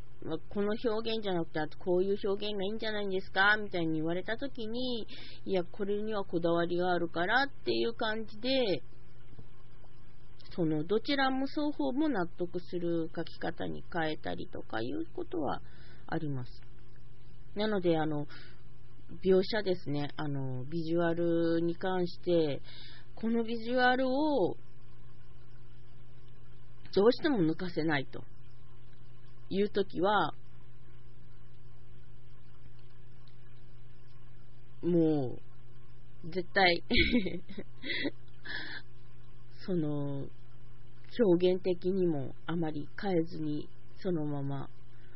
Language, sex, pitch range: Japanese, female, 120-185 Hz